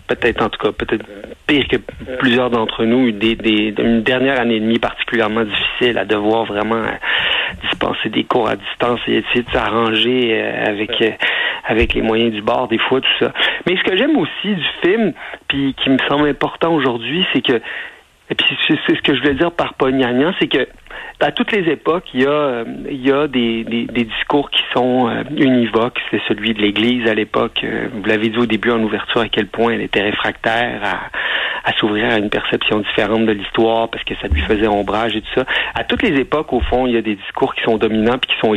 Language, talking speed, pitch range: French, 215 wpm, 110-130 Hz